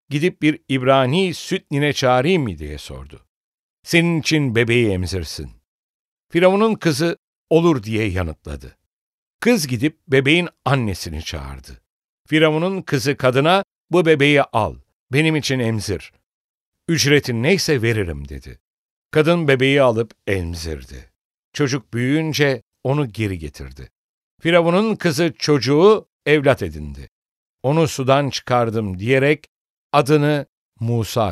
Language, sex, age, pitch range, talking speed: English, male, 60-79, 110-160 Hz, 105 wpm